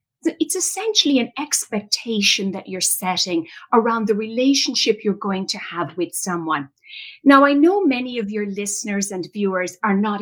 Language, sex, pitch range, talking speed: English, female, 195-285 Hz, 160 wpm